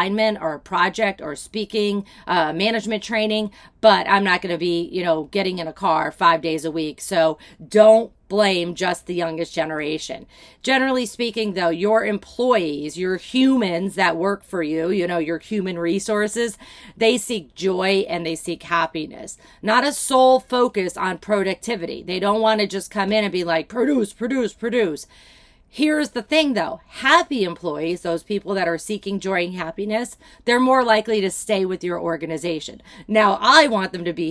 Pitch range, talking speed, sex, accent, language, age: 175-220 Hz, 175 wpm, female, American, English, 40-59